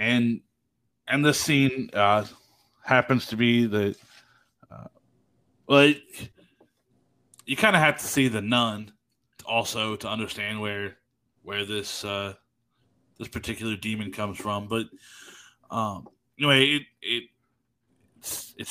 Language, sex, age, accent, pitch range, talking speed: English, male, 20-39, American, 110-130 Hz, 125 wpm